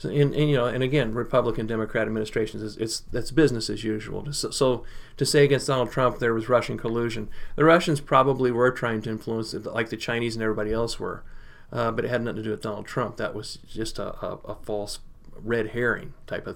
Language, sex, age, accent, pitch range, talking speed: English, male, 40-59, American, 110-130 Hz, 220 wpm